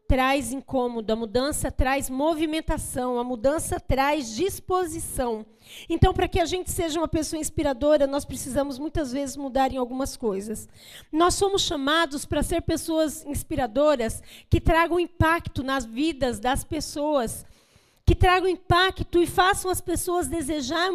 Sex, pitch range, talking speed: female, 280-350 Hz, 140 wpm